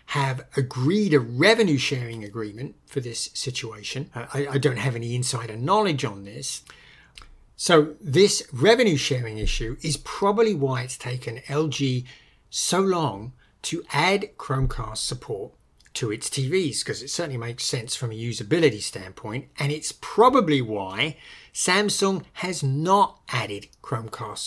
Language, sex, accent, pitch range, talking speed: English, male, British, 120-150 Hz, 135 wpm